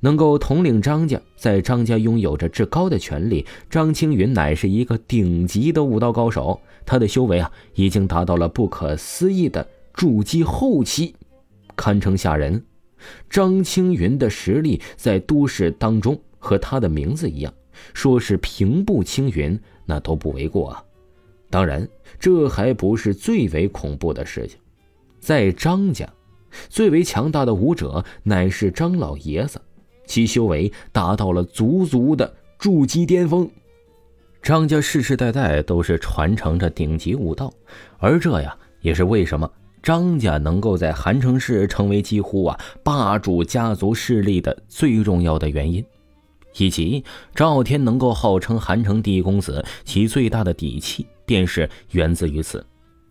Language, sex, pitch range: Chinese, male, 85-125 Hz